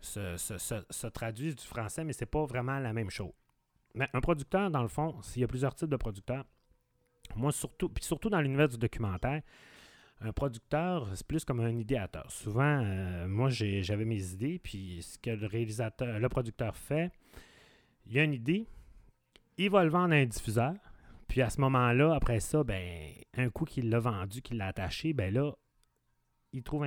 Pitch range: 110-145 Hz